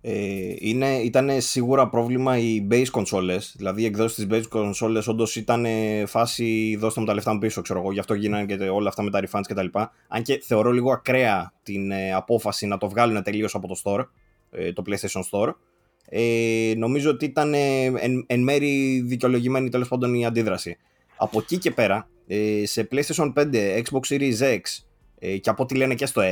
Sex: male